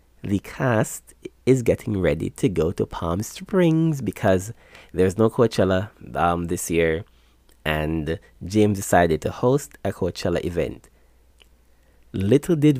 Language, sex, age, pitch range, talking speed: English, male, 30-49, 80-105 Hz, 125 wpm